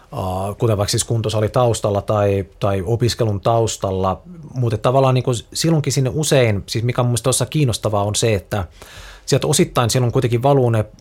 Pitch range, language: 105-130 Hz, Finnish